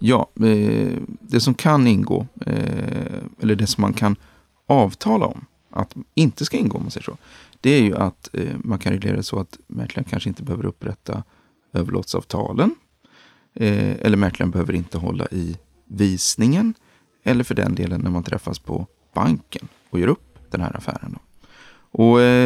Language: Swedish